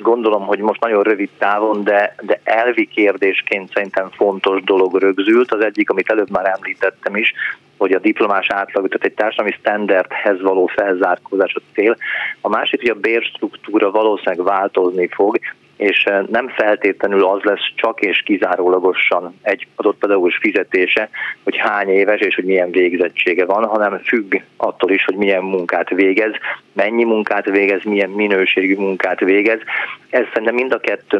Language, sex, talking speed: Hungarian, male, 155 wpm